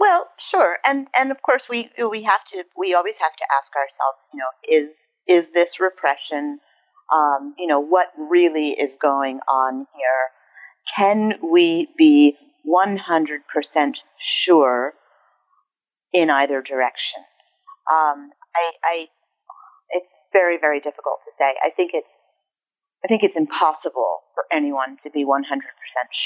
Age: 40-59